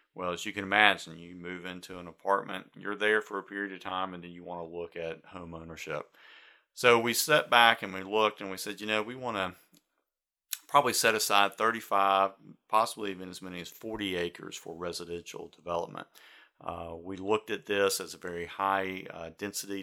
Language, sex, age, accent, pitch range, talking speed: English, male, 40-59, American, 90-100 Hz, 200 wpm